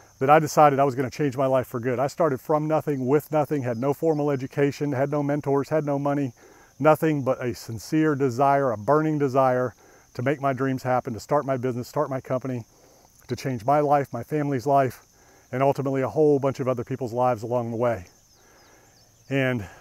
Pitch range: 125-145 Hz